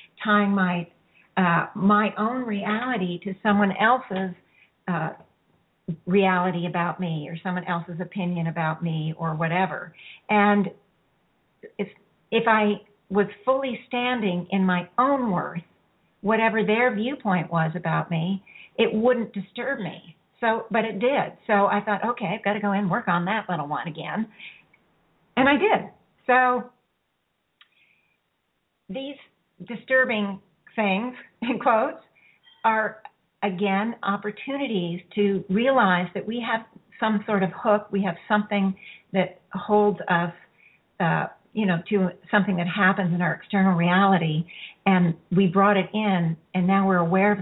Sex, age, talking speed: female, 50-69, 140 wpm